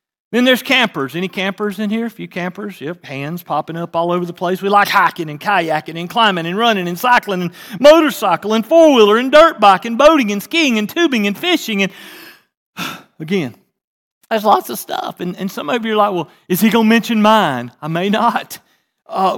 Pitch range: 165-235 Hz